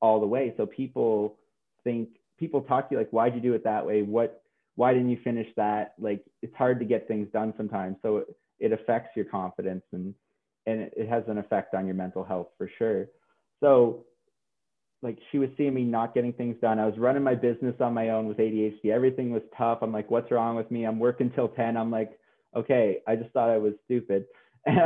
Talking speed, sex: 220 wpm, male